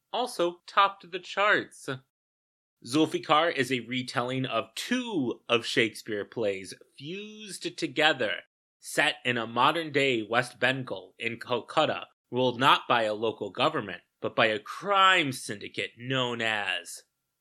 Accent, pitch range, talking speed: American, 110-145 Hz, 125 wpm